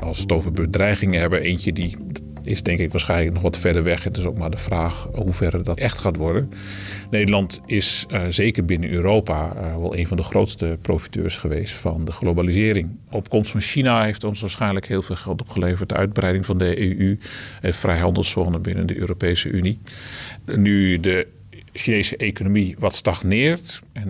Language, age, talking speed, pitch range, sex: Dutch, 40-59, 180 wpm, 90-105 Hz, male